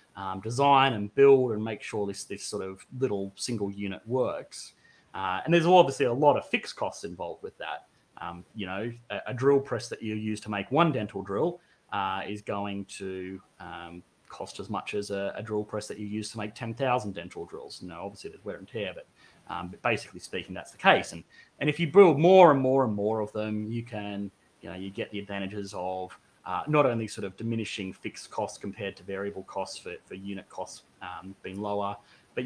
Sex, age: male, 30-49